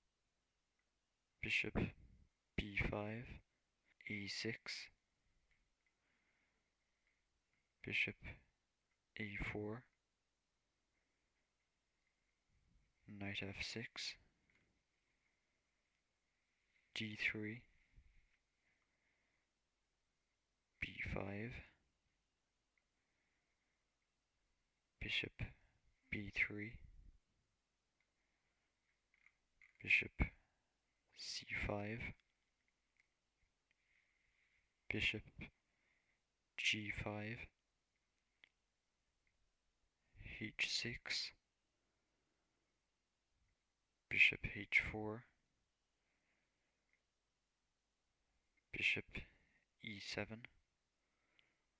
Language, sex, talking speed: English, male, 30 wpm